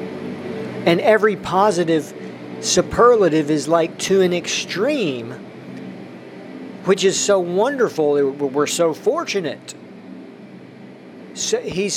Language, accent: English, American